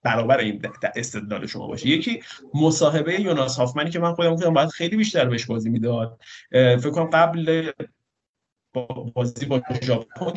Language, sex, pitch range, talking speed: Persian, male, 125-180 Hz, 140 wpm